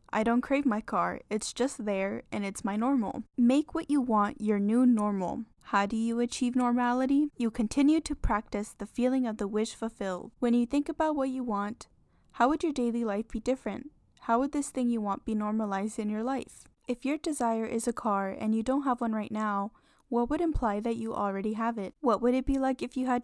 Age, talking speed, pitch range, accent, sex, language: 10-29, 225 wpm, 210-255 Hz, American, female, English